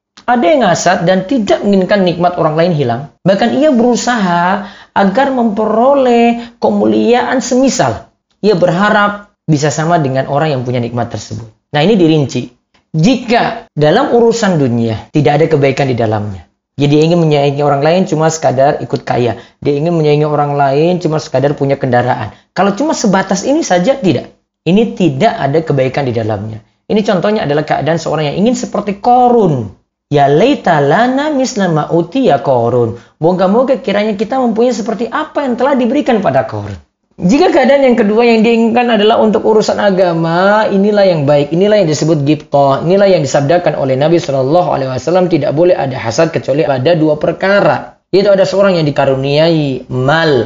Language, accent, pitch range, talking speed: Indonesian, native, 145-220 Hz, 160 wpm